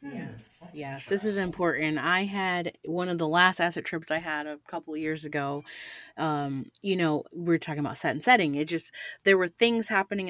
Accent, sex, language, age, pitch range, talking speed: American, female, English, 30-49, 155-215 Hz, 205 wpm